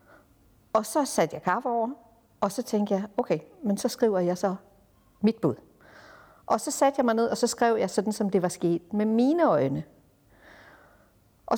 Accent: native